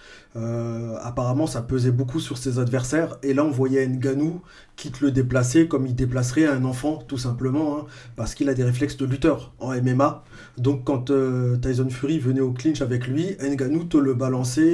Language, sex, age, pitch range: French, male, 30-49, 125-150 Hz